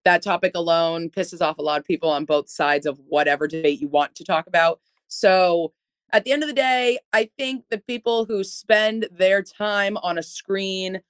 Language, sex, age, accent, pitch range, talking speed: English, female, 30-49, American, 165-215 Hz, 205 wpm